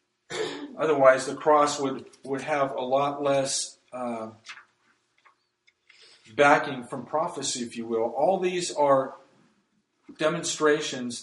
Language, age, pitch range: English, 40-59, 135-185 Hz